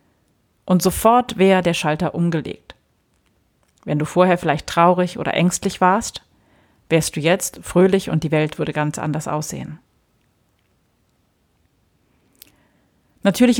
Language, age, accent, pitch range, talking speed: German, 30-49, German, 150-185 Hz, 115 wpm